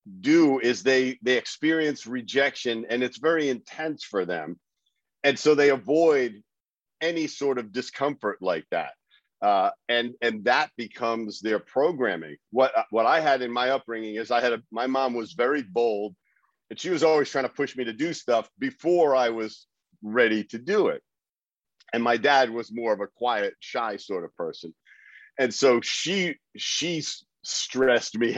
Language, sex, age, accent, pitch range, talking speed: English, male, 50-69, American, 115-150 Hz, 170 wpm